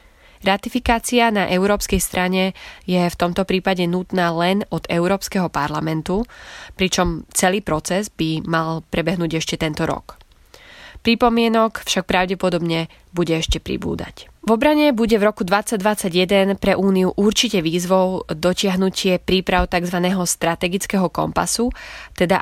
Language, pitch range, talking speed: Slovak, 170-210 Hz, 120 wpm